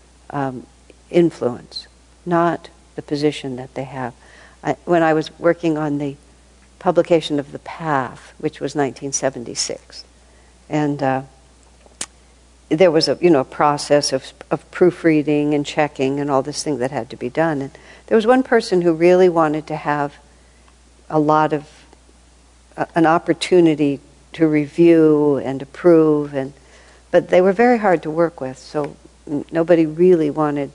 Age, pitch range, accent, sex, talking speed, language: 60-79, 130-165 Hz, American, female, 150 wpm, English